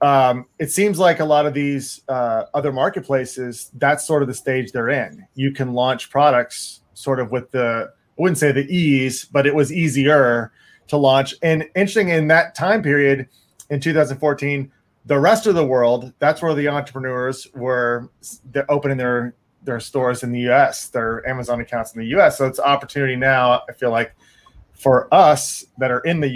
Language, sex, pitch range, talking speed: English, male, 125-145 Hz, 185 wpm